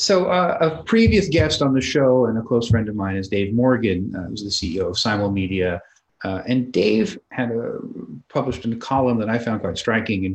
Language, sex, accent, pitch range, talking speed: English, male, American, 95-125 Hz, 220 wpm